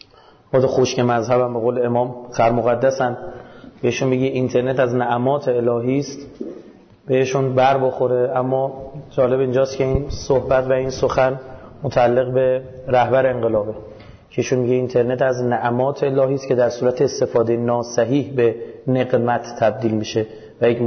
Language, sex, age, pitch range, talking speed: Persian, male, 30-49, 125-135 Hz, 140 wpm